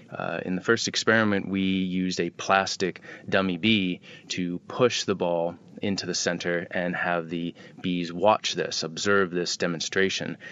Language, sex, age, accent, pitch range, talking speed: English, male, 30-49, American, 90-105 Hz, 155 wpm